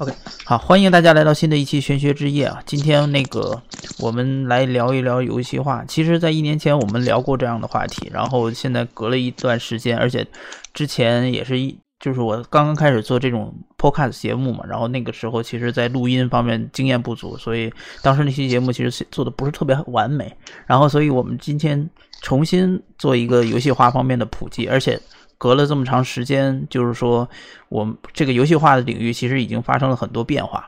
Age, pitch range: 20-39, 120-145 Hz